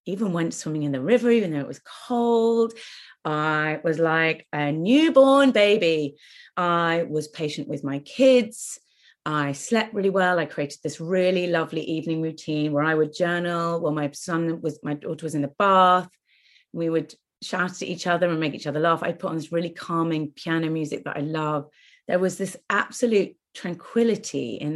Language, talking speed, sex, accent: English, 185 wpm, female, British